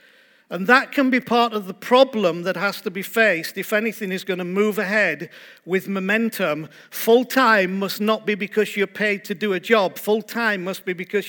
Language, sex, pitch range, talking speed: English, male, 195-235 Hz, 205 wpm